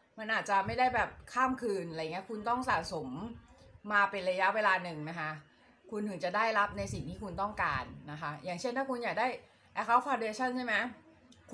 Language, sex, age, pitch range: Thai, female, 20-39, 180-235 Hz